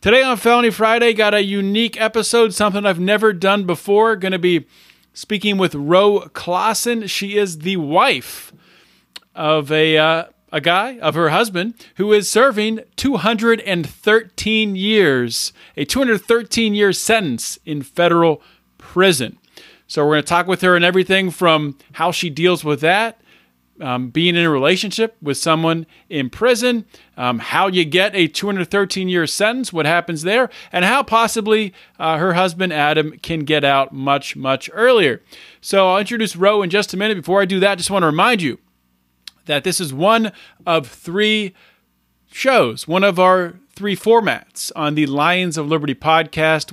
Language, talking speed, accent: English, 160 wpm, American